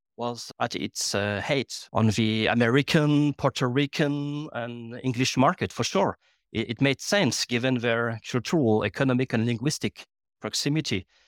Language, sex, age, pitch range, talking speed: English, male, 40-59, 120-150 Hz, 140 wpm